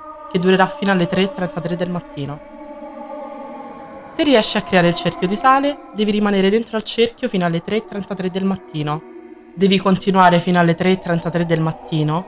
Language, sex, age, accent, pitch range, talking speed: Italian, female, 20-39, native, 160-200 Hz, 150 wpm